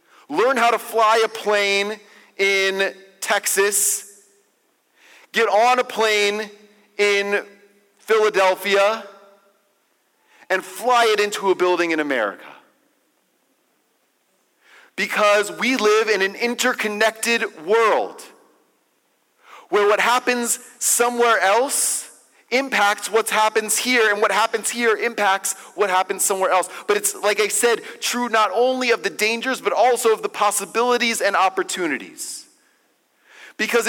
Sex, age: male, 40-59